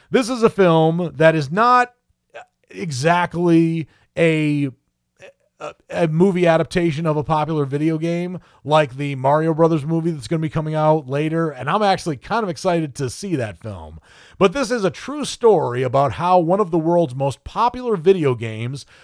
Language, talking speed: English, 175 wpm